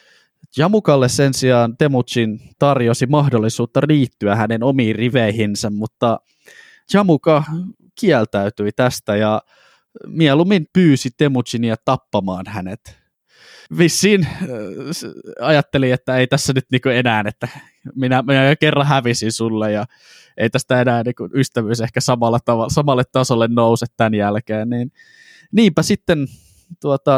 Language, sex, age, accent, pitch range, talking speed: Finnish, male, 20-39, native, 110-145 Hz, 110 wpm